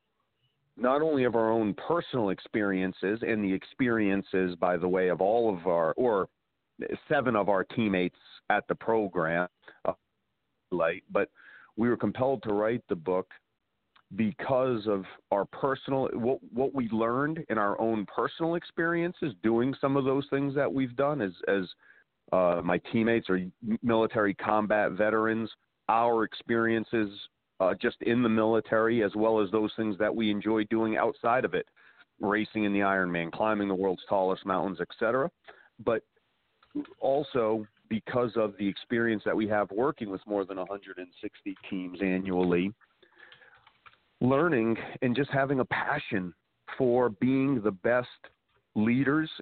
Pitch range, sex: 100-125 Hz, male